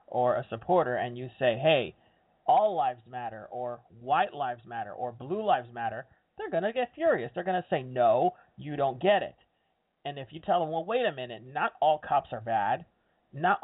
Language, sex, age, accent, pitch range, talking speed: English, male, 30-49, American, 125-180 Hz, 205 wpm